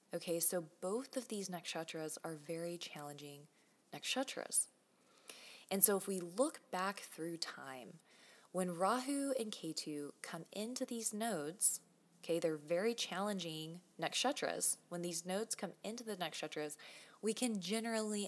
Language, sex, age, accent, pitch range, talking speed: English, female, 20-39, American, 155-200 Hz, 135 wpm